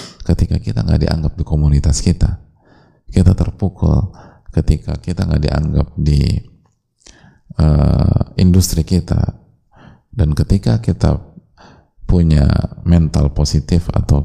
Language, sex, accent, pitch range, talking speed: Indonesian, male, native, 75-95 Hz, 100 wpm